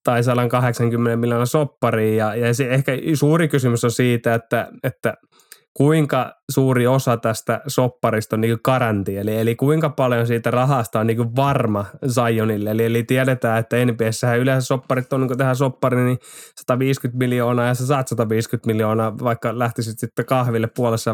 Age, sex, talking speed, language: 20-39, male, 155 wpm, Finnish